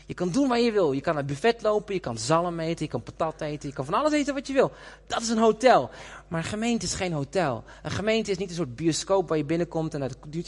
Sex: male